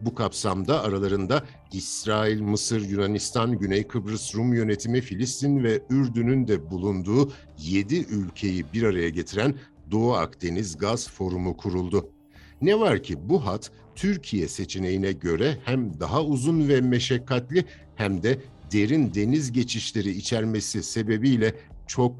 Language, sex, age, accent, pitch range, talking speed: Turkish, male, 60-79, native, 100-135 Hz, 125 wpm